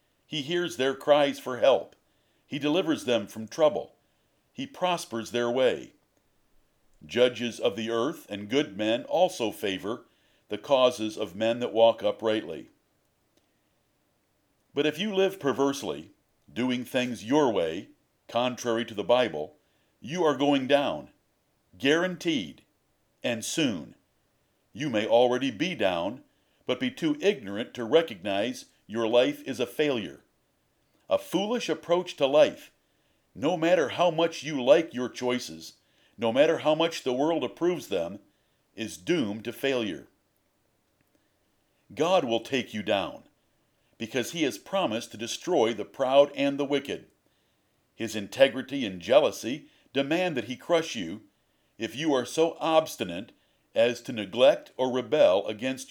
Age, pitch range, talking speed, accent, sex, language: 50-69, 115-150 Hz, 135 wpm, American, male, English